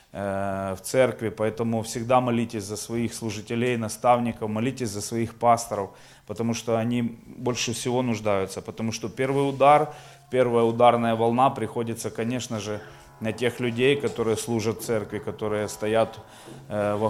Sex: male